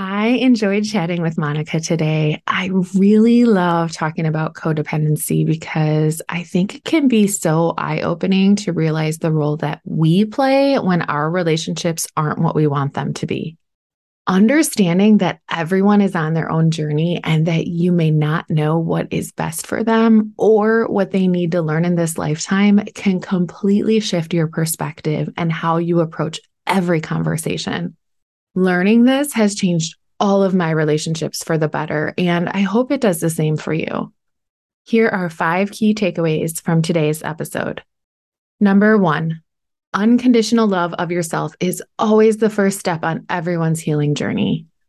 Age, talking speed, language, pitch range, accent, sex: 20-39, 160 wpm, English, 160-200 Hz, American, female